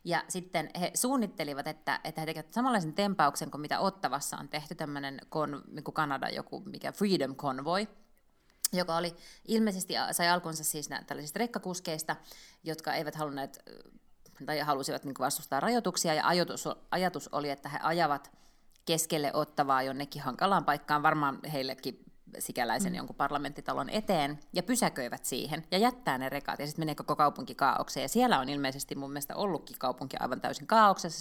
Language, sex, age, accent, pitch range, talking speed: Finnish, female, 30-49, native, 145-185 Hz, 160 wpm